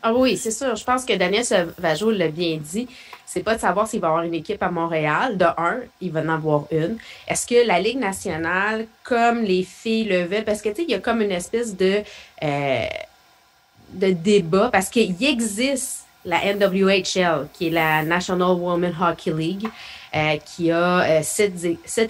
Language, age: French, 30-49